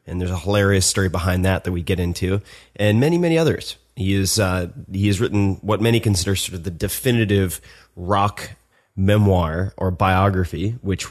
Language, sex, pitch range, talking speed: English, male, 90-105 Hz, 180 wpm